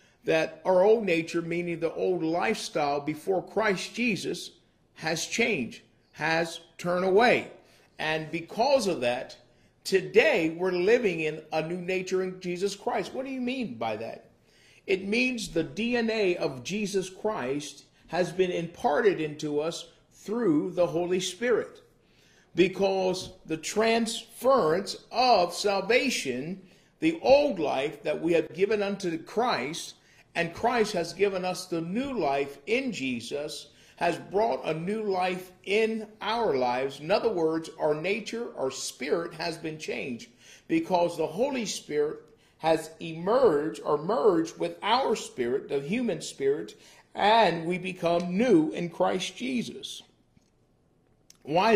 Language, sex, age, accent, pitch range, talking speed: English, male, 50-69, American, 165-225 Hz, 135 wpm